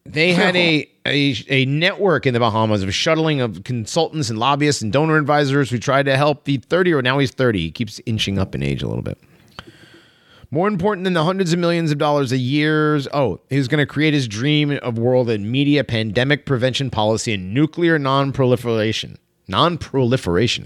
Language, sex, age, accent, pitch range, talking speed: English, male, 30-49, American, 110-155 Hz, 200 wpm